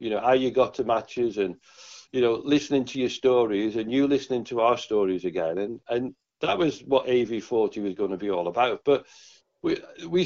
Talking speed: 210 wpm